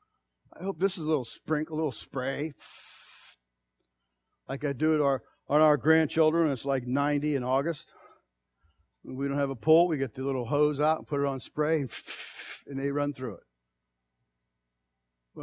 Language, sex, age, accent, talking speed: English, male, 50-69, American, 175 wpm